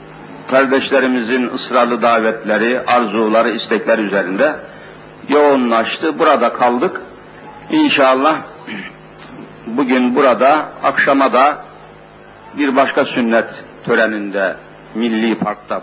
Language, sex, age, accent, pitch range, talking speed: Turkish, male, 60-79, native, 125-160 Hz, 75 wpm